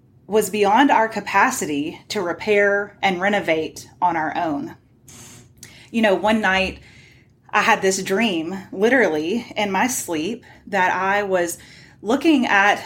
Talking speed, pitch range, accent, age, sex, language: 130 wpm, 180-240 Hz, American, 30-49, female, English